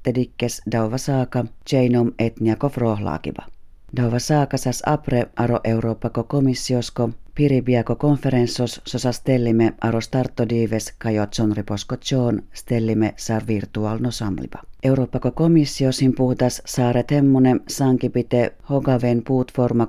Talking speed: 95 wpm